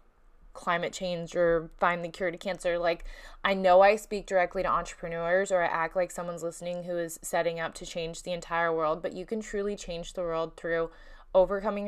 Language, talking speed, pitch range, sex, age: English, 200 wpm, 170-190 Hz, female, 20-39